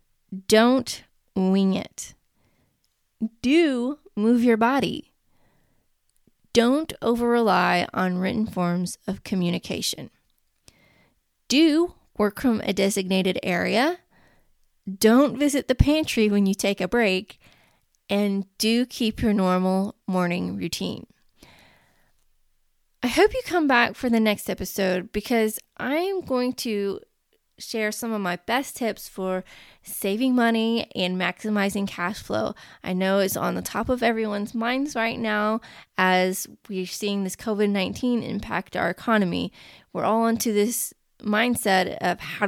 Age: 20-39